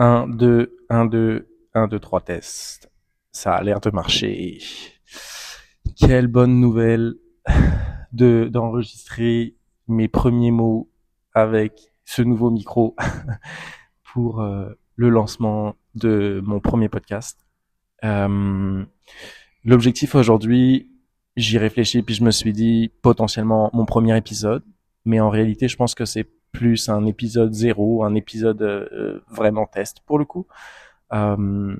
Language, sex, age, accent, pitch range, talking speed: French, male, 20-39, French, 105-120 Hz, 125 wpm